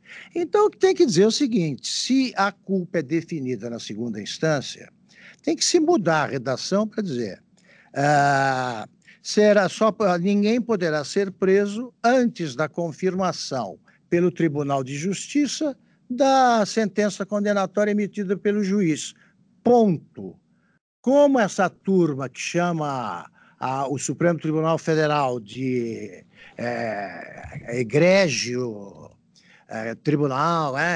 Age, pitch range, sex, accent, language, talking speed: 60-79, 145-205 Hz, male, Brazilian, Portuguese, 105 wpm